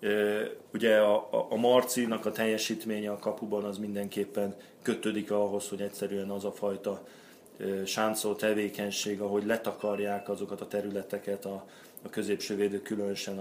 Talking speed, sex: 135 wpm, male